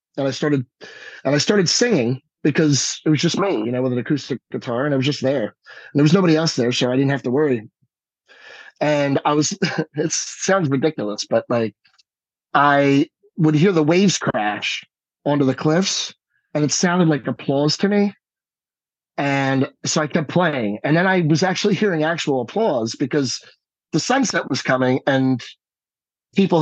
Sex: male